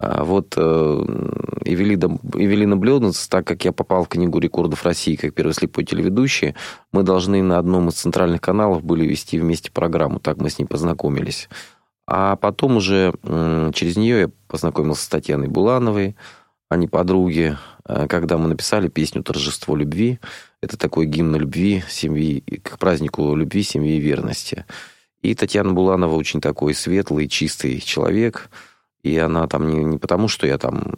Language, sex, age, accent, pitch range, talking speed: Russian, male, 30-49, native, 80-100 Hz, 160 wpm